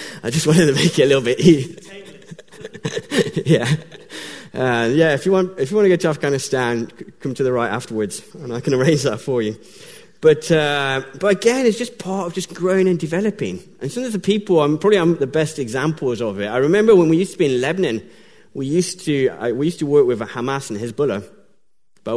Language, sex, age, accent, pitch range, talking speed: English, male, 20-39, British, 125-185 Hz, 220 wpm